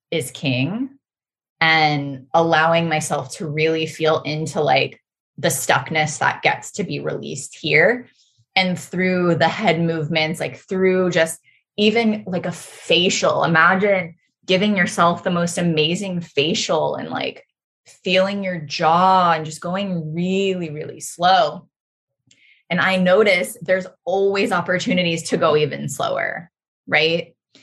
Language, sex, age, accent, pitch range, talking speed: English, female, 20-39, American, 150-185 Hz, 130 wpm